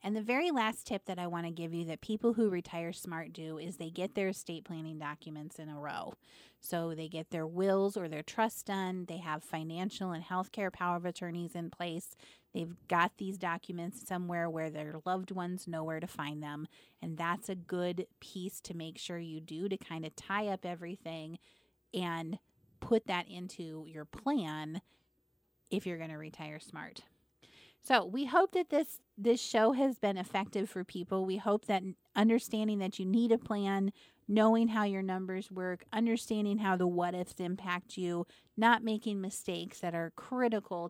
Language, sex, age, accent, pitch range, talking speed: English, female, 30-49, American, 165-205 Hz, 185 wpm